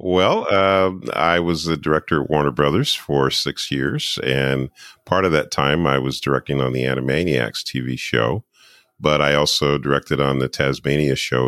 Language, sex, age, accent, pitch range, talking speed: English, male, 40-59, American, 65-75 Hz, 170 wpm